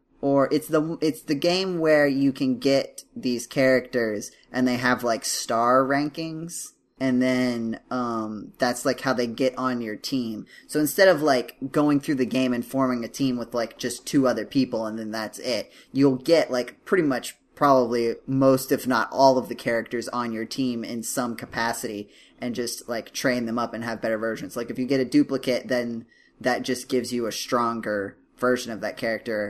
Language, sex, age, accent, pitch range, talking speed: English, male, 10-29, American, 115-140 Hz, 195 wpm